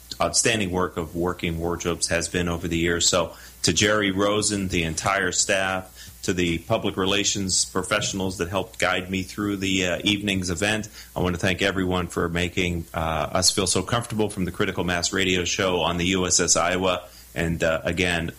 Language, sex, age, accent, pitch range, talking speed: English, male, 30-49, American, 85-120 Hz, 185 wpm